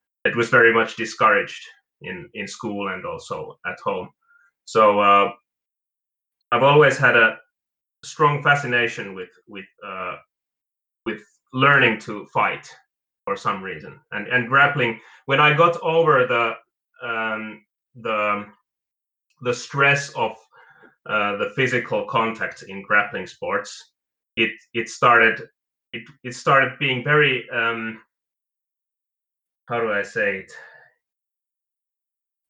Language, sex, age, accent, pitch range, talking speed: English, male, 30-49, Finnish, 115-165 Hz, 110 wpm